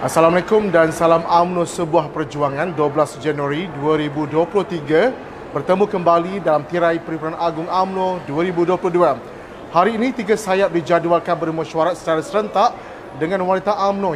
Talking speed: 120 wpm